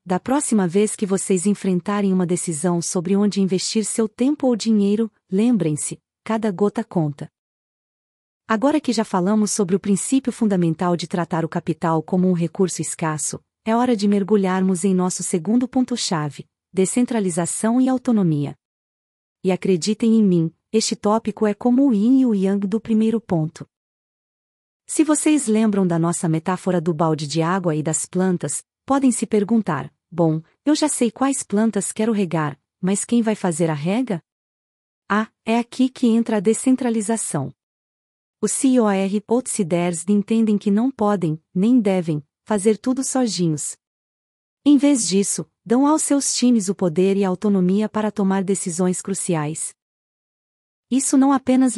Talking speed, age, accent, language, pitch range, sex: 155 wpm, 40-59, Brazilian, Portuguese, 180-225 Hz, female